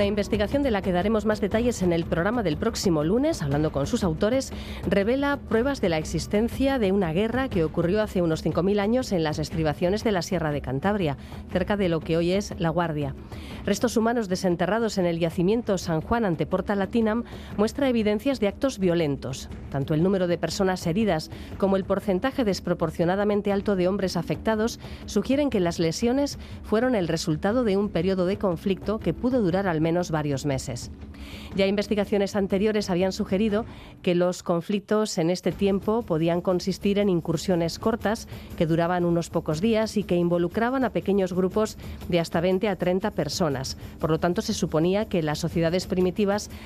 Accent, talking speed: Spanish, 180 wpm